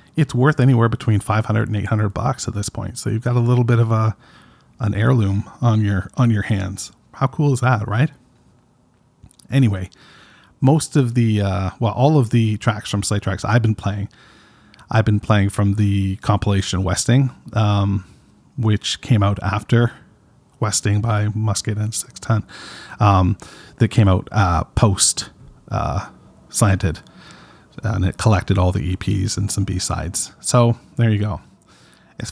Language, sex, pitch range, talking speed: English, male, 100-115 Hz, 160 wpm